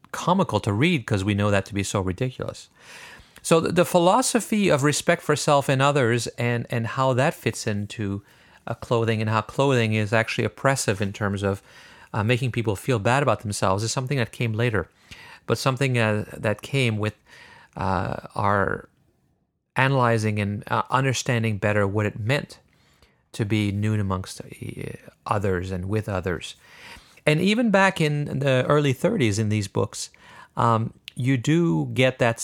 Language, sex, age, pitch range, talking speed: English, male, 40-59, 105-135 Hz, 165 wpm